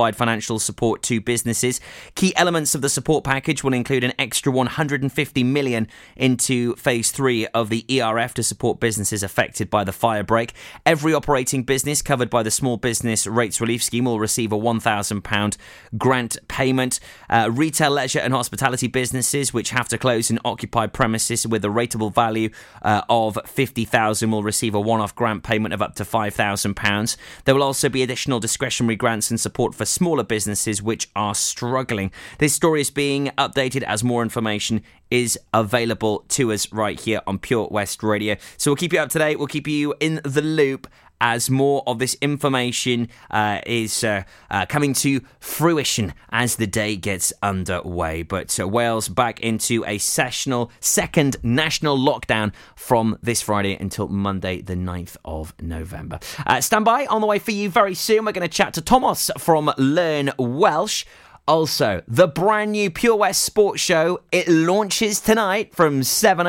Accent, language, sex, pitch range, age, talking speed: British, English, male, 110-140 Hz, 20-39, 170 wpm